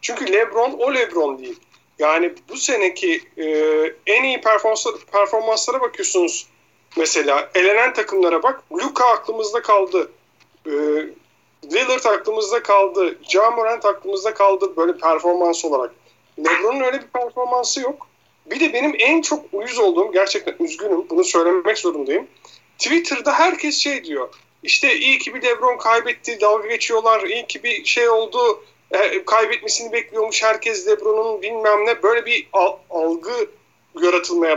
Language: Turkish